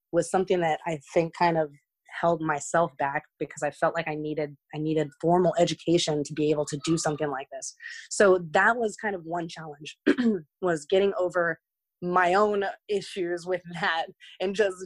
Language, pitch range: English, 155-195 Hz